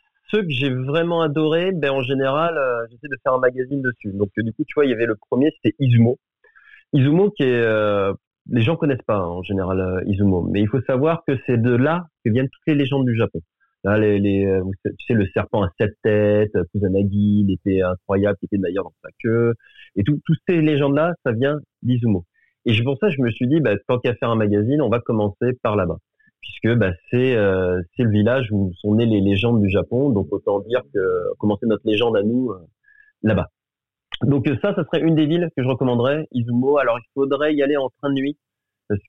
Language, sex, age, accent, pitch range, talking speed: French, male, 30-49, French, 105-140 Hz, 235 wpm